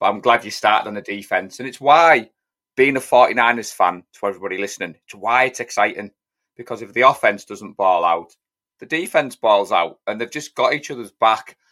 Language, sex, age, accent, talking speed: English, male, 30-49, British, 205 wpm